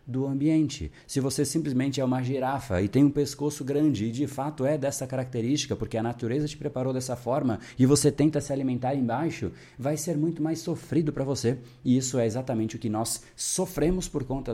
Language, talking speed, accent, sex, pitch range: Portuguese, 200 wpm, Brazilian, male, 105-145 Hz